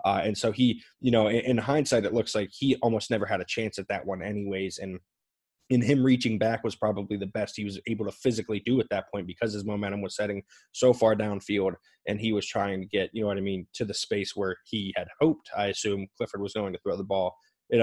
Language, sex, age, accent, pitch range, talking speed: English, male, 20-39, American, 100-110 Hz, 255 wpm